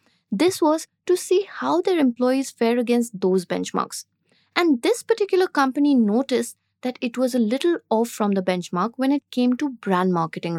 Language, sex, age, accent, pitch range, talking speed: English, female, 20-39, Indian, 210-295 Hz, 175 wpm